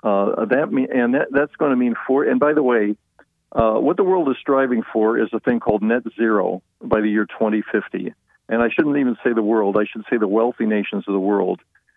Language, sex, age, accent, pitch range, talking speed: English, male, 50-69, American, 105-125 Hz, 235 wpm